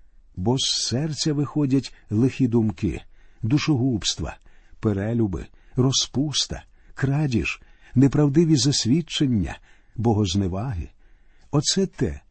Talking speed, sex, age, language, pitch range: 75 wpm, male, 50-69, Ukrainian, 110-150 Hz